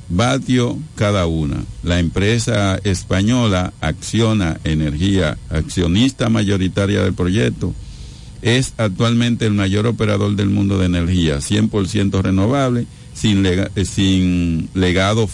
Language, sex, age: Spanish, male, 50-69